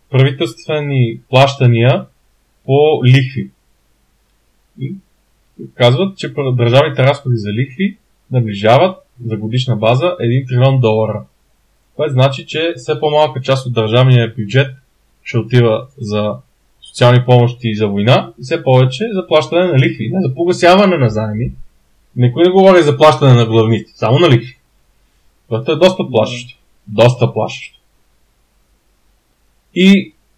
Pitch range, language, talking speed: 115-150 Hz, Bulgarian, 125 wpm